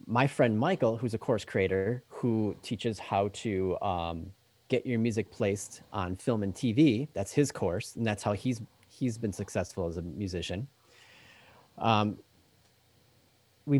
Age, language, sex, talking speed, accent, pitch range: 30-49, English, male, 150 wpm, American, 100-130 Hz